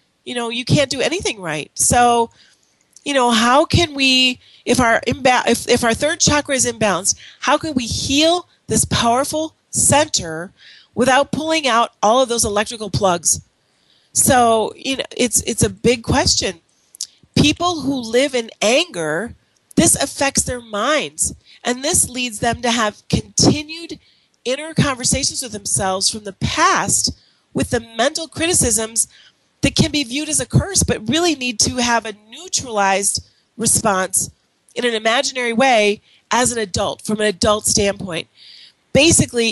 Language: English